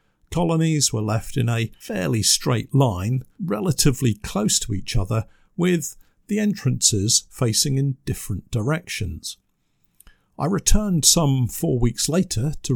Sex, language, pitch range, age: male, English, 110-145 Hz, 50-69